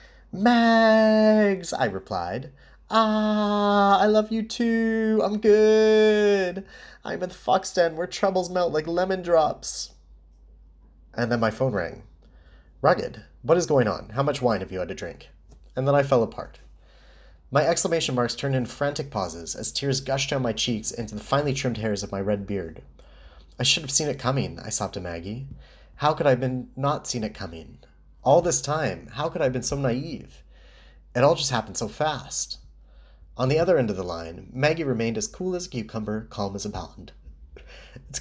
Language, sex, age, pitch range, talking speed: English, male, 30-49, 100-160 Hz, 190 wpm